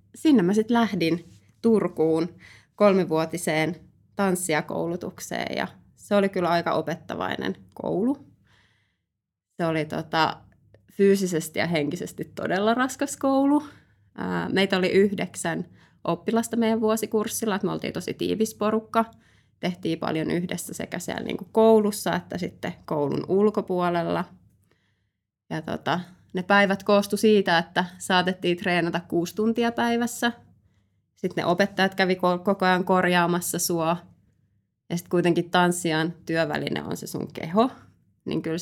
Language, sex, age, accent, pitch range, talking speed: Finnish, female, 20-39, native, 155-205 Hz, 120 wpm